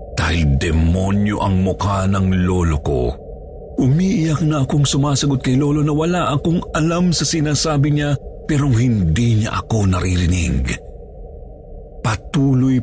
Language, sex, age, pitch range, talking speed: Filipino, male, 50-69, 85-135 Hz, 120 wpm